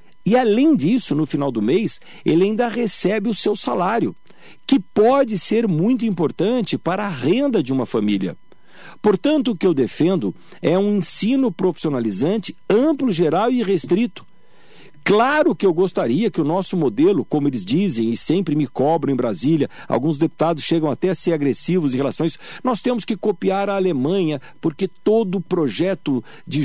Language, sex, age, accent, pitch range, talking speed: Portuguese, male, 50-69, Brazilian, 165-225 Hz, 170 wpm